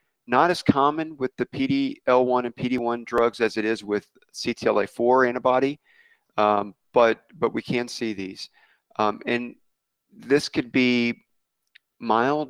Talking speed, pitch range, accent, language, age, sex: 135 wpm, 105-125 Hz, American, English, 40-59, male